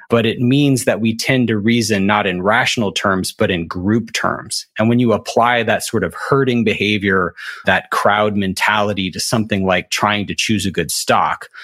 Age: 30-49